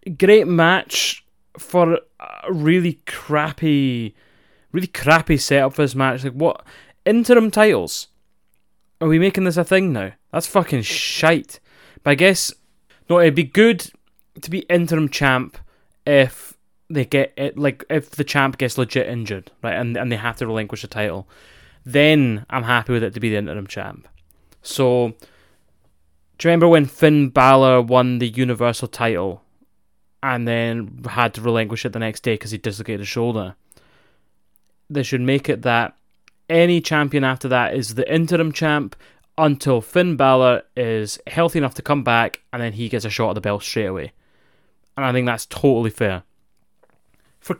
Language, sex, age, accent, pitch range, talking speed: English, male, 20-39, British, 115-165 Hz, 165 wpm